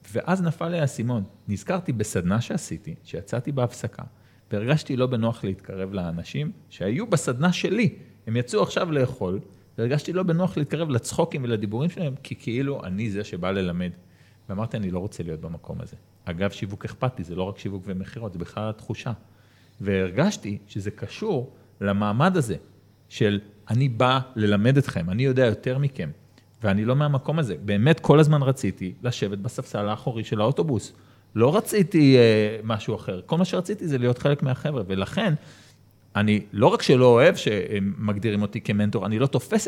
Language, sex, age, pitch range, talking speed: Hebrew, male, 40-59, 105-150 Hz, 155 wpm